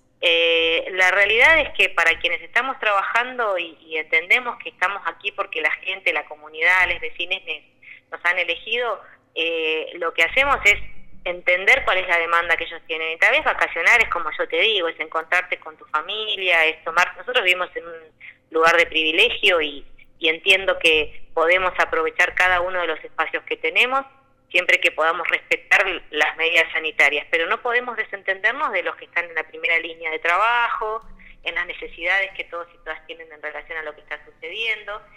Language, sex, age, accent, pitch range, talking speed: Spanish, female, 20-39, Argentinian, 165-240 Hz, 190 wpm